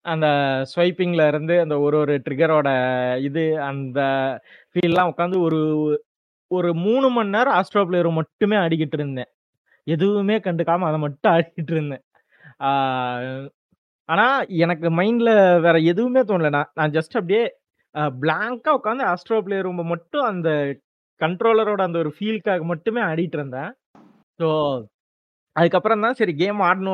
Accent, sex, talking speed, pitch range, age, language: native, male, 125 wpm, 145-185 Hz, 20-39, Tamil